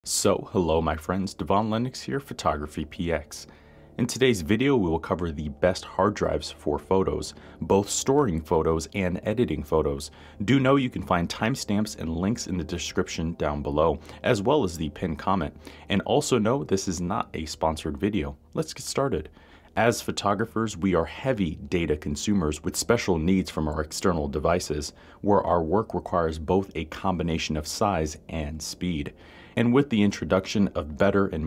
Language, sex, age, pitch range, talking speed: English, male, 30-49, 75-100 Hz, 170 wpm